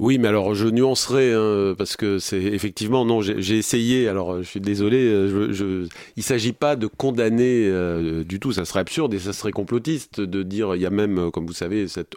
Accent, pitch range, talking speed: French, 95-120 Hz, 225 wpm